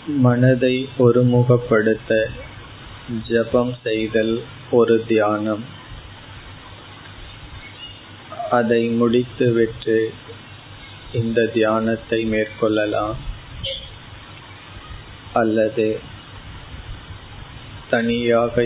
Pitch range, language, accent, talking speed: 105-120 Hz, Tamil, native, 40 wpm